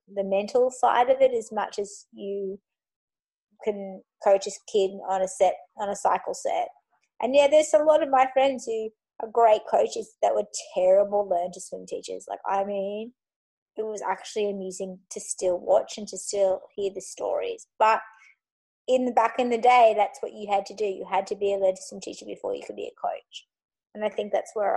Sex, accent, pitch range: female, Australian, 200-255 Hz